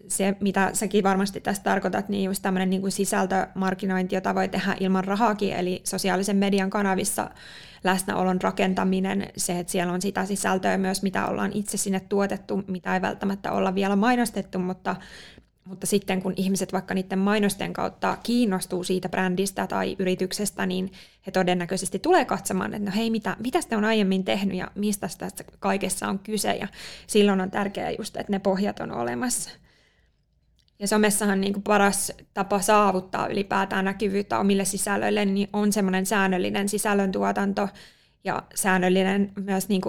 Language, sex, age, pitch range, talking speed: Finnish, female, 20-39, 190-205 Hz, 155 wpm